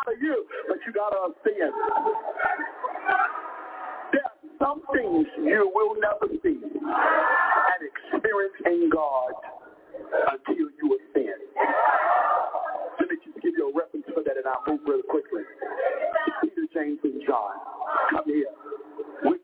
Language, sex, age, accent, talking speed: English, male, 50-69, American, 125 wpm